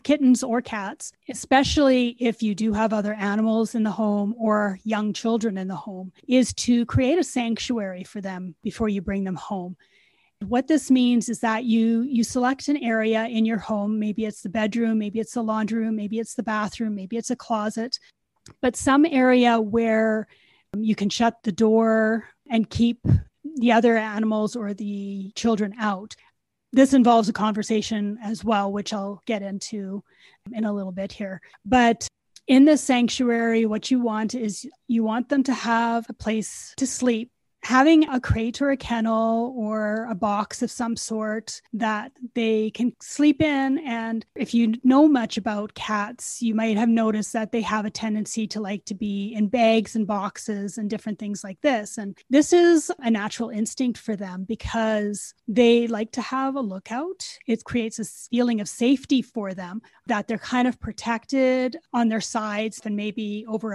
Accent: American